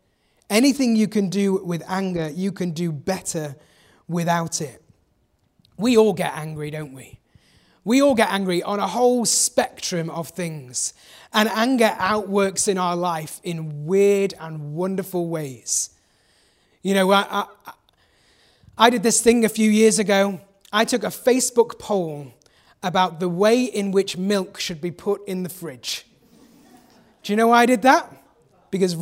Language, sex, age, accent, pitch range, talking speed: English, male, 30-49, British, 185-245 Hz, 155 wpm